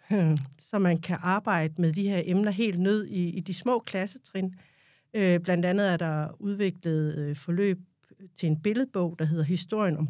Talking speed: 180 wpm